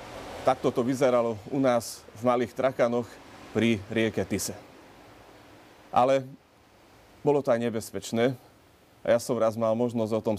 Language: Slovak